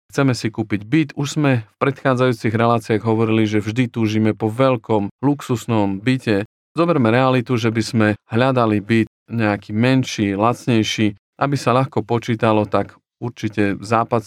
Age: 40-59